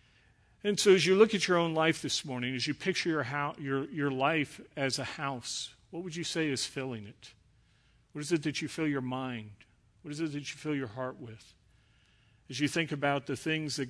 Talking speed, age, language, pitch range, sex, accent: 230 wpm, 50-69, English, 125-150 Hz, male, American